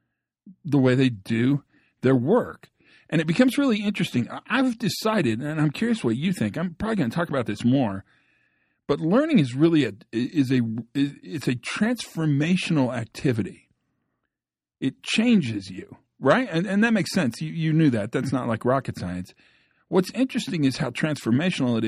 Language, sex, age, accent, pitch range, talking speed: English, male, 50-69, American, 120-165 Hz, 170 wpm